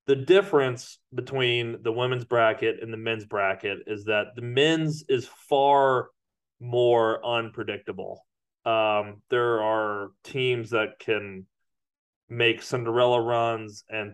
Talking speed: 120 wpm